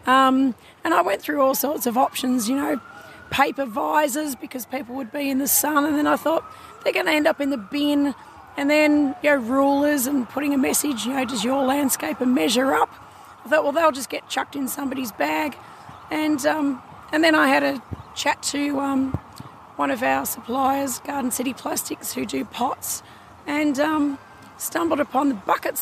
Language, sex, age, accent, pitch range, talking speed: English, female, 30-49, Australian, 265-300 Hz, 195 wpm